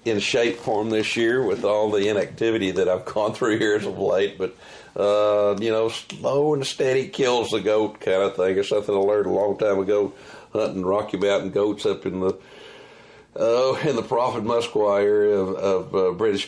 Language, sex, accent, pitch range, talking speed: English, male, American, 95-145 Hz, 200 wpm